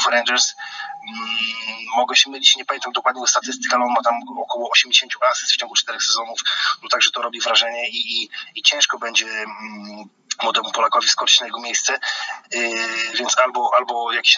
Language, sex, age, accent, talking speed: Polish, male, 20-39, native, 165 wpm